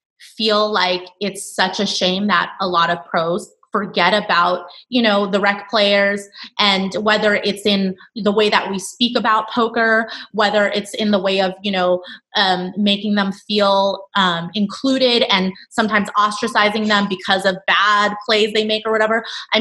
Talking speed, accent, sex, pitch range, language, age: 170 wpm, American, female, 190-215 Hz, English, 20-39